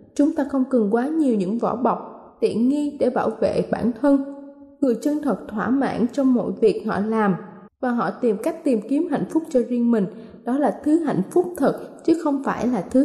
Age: 10-29